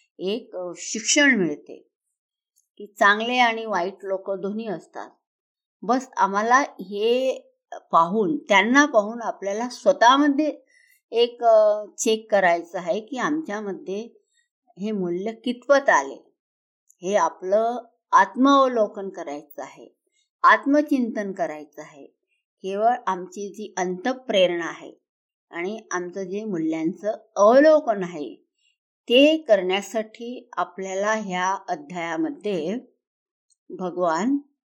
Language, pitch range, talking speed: Hindi, 195-285 Hz, 60 wpm